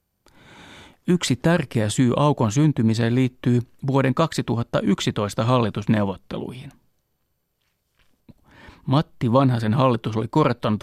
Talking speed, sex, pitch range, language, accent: 80 wpm, male, 115-145 Hz, Finnish, native